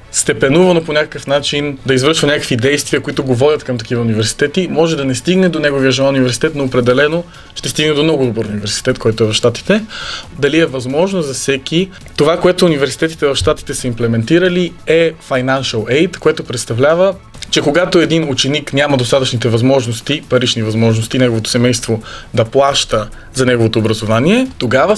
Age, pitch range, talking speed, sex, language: 20-39, 120-155 Hz, 165 wpm, male, Bulgarian